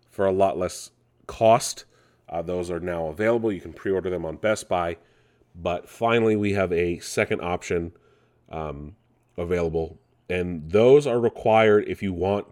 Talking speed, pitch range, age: 160 wpm, 85-110 Hz, 30-49